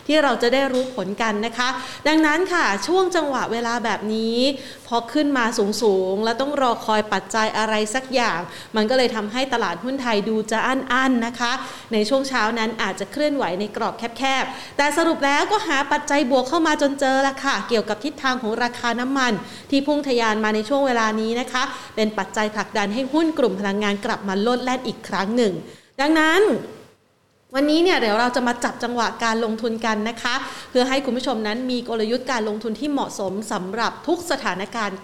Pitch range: 215-275 Hz